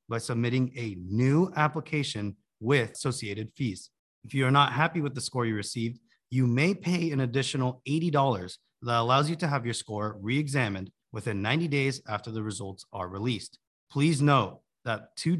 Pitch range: 110-150 Hz